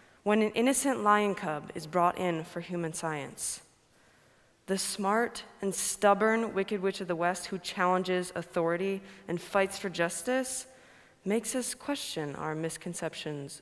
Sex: female